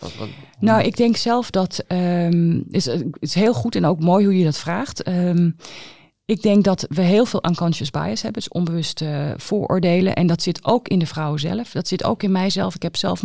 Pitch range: 150-185 Hz